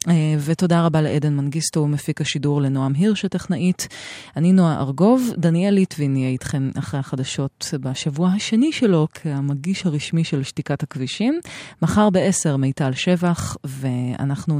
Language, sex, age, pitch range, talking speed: Hebrew, female, 30-49, 135-170 Hz, 125 wpm